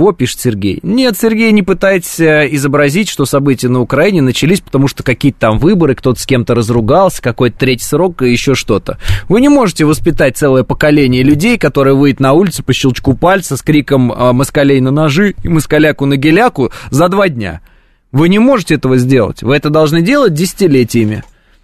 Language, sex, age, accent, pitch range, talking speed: Russian, male, 20-39, native, 130-185 Hz, 175 wpm